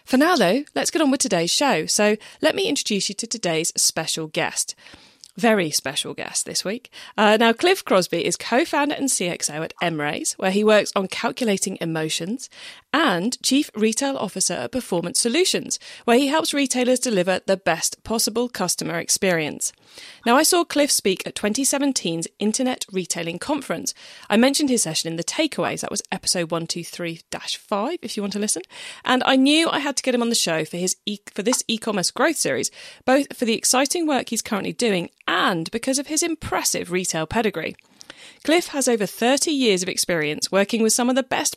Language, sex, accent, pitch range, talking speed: English, female, British, 185-270 Hz, 185 wpm